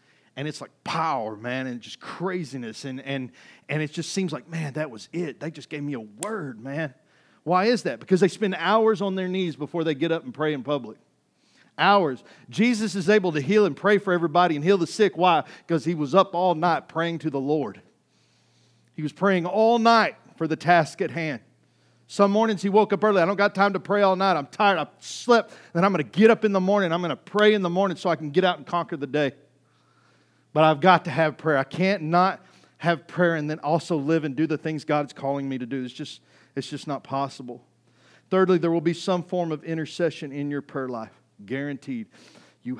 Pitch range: 145-185 Hz